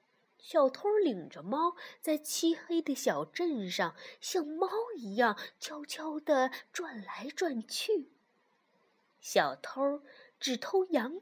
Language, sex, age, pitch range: Chinese, female, 20-39, 235-350 Hz